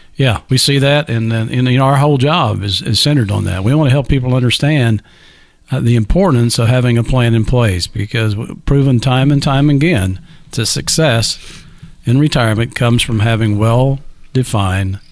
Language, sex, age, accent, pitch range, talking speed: English, male, 50-69, American, 115-155 Hz, 175 wpm